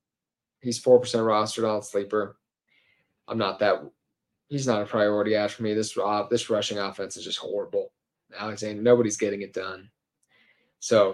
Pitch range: 110-130 Hz